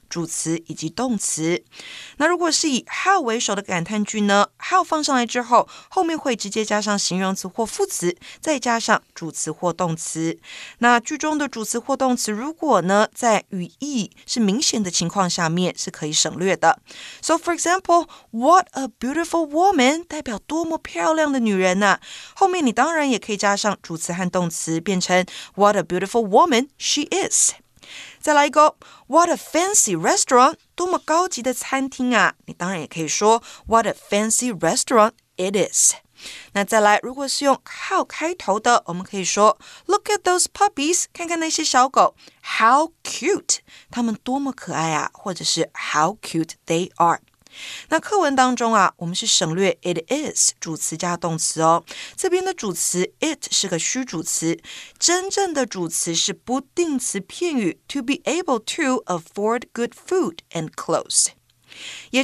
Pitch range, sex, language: 185-315 Hz, female, Chinese